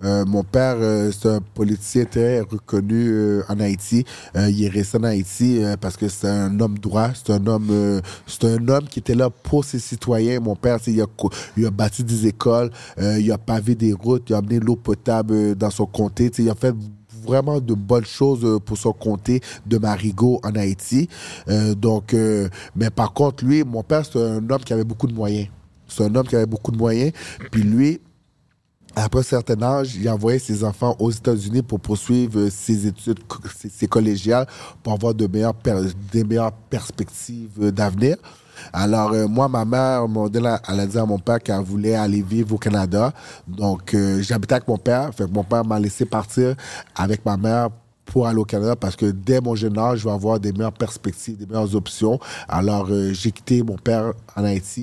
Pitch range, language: 105-120 Hz, French